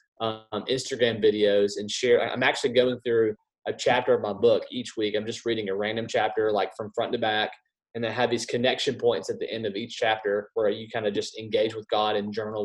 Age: 20-39